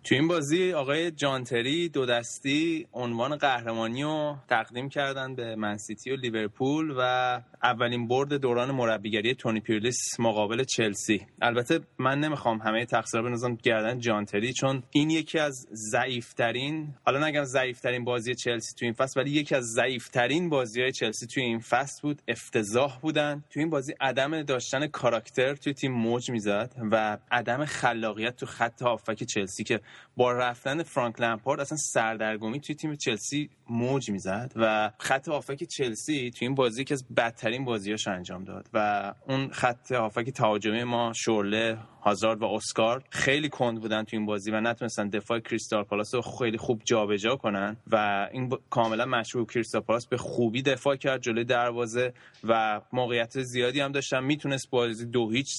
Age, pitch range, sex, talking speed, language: 20-39, 115-135 Hz, male, 165 wpm, Persian